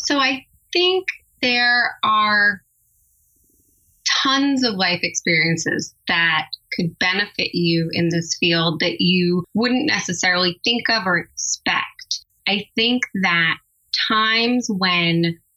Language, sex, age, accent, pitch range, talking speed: English, female, 20-39, American, 170-215 Hz, 110 wpm